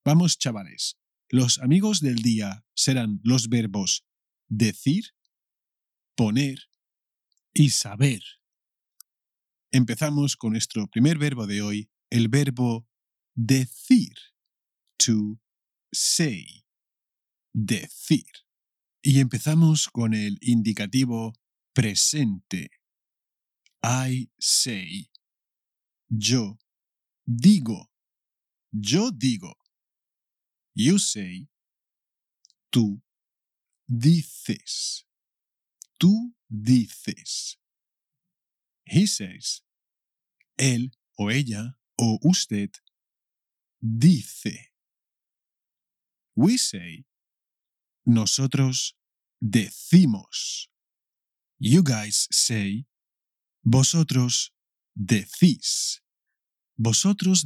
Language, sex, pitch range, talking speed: English, male, 110-150 Hz, 65 wpm